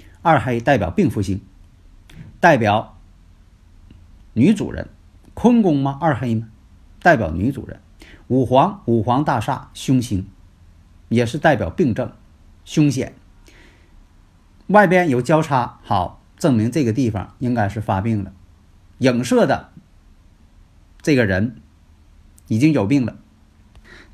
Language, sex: Chinese, male